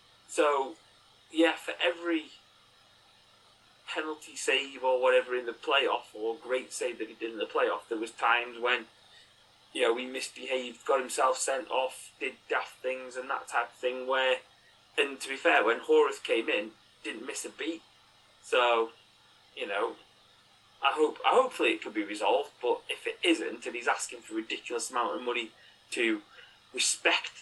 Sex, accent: male, British